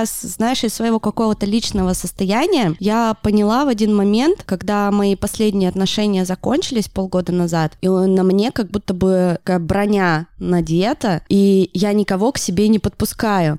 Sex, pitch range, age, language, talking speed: female, 170-210 Hz, 20-39, Russian, 150 wpm